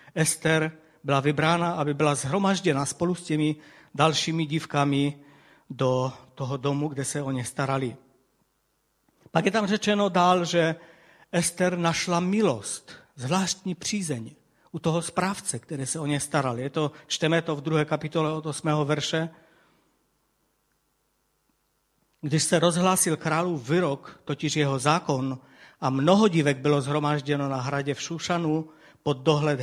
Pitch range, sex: 140-170 Hz, male